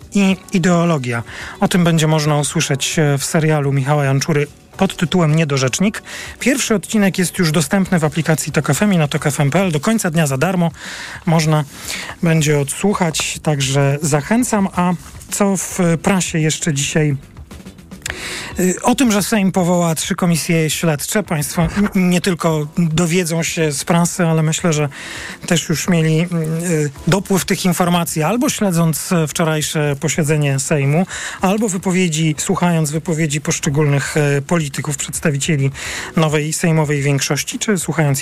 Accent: native